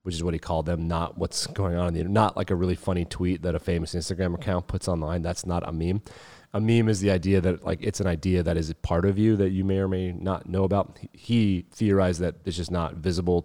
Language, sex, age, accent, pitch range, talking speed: English, male, 30-49, American, 90-105 Hz, 270 wpm